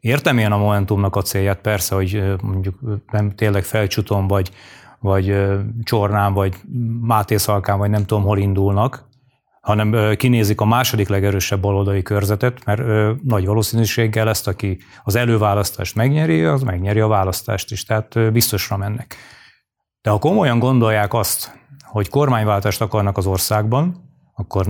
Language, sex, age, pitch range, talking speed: Hungarian, male, 30-49, 100-120 Hz, 135 wpm